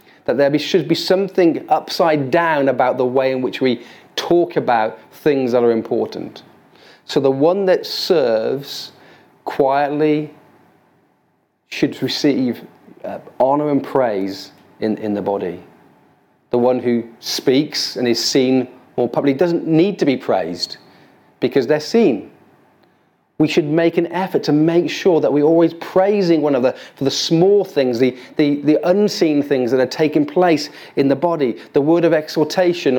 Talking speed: 155 wpm